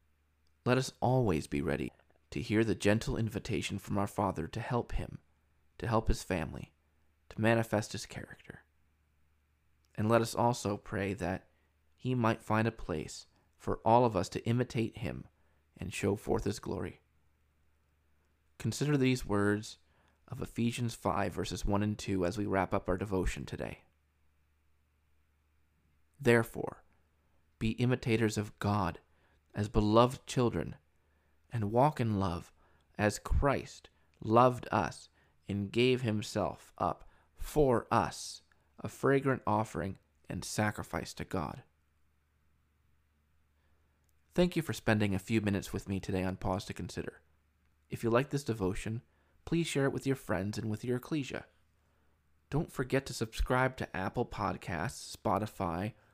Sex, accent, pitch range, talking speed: male, American, 75-115 Hz, 140 wpm